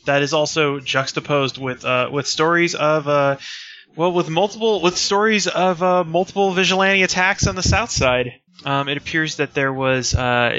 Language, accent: English, American